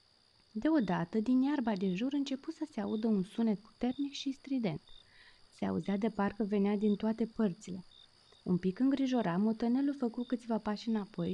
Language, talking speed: Romanian, 160 wpm